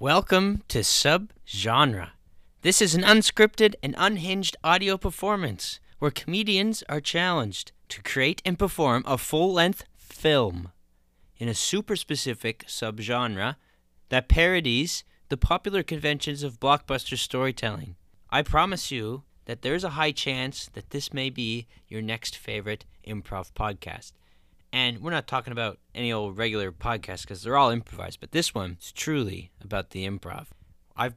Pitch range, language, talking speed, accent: 105-155 Hz, English, 140 wpm, American